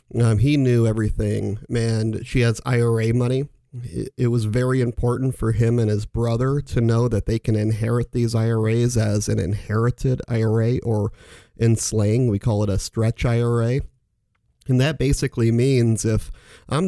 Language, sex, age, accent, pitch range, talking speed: English, male, 40-59, American, 110-130 Hz, 165 wpm